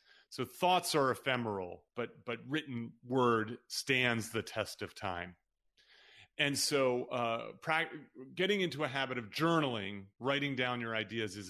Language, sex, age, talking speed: English, male, 30-49, 140 wpm